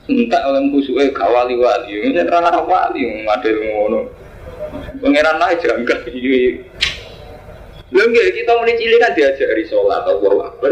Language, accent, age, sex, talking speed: Indonesian, native, 20-39, male, 75 wpm